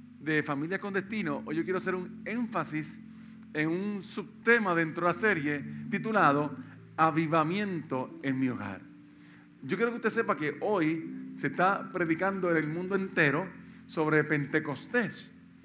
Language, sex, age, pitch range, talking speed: Spanish, male, 50-69, 155-205 Hz, 145 wpm